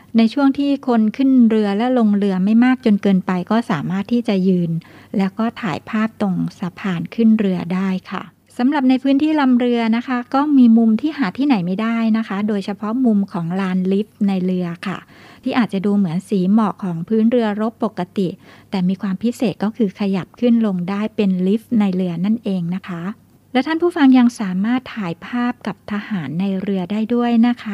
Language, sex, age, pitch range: Thai, female, 60-79, 190-235 Hz